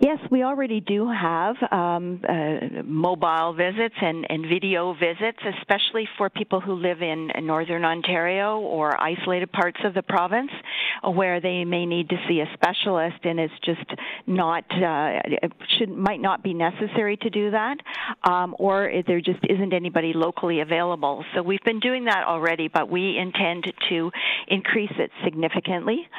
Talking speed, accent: 160 wpm, American